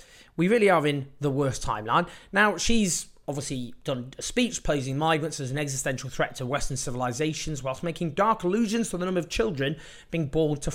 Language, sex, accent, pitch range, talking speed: English, male, British, 135-180 Hz, 185 wpm